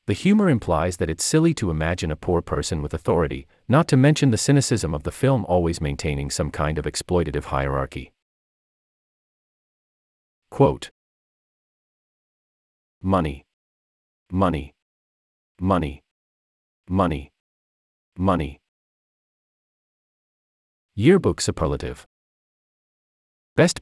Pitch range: 70-115 Hz